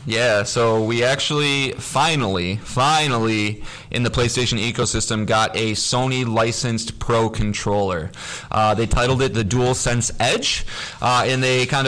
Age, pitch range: 20-39, 110-125 Hz